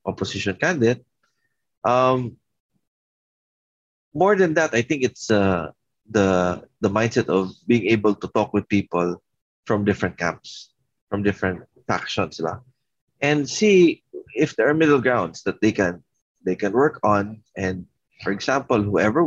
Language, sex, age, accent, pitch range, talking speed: English, male, 20-39, Filipino, 95-125 Hz, 135 wpm